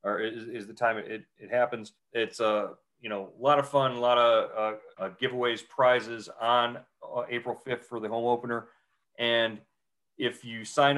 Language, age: English, 40-59